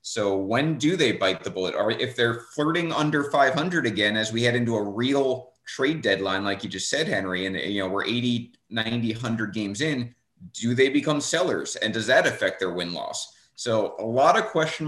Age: 30-49